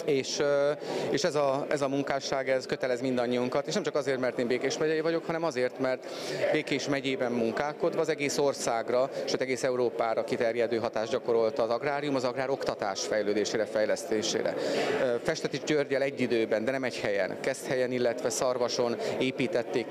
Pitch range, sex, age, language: 125-150 Hz, male, 30-49, Hungarian